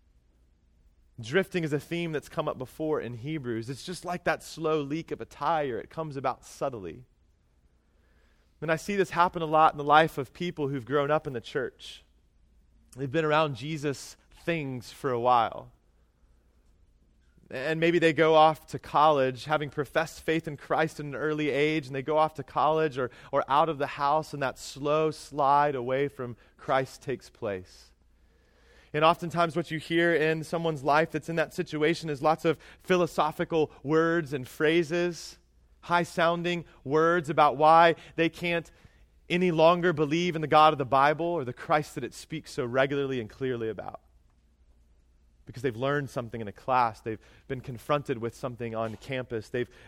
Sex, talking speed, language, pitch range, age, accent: male, 175 wpm, English, 110-160 Hz, 30-49, American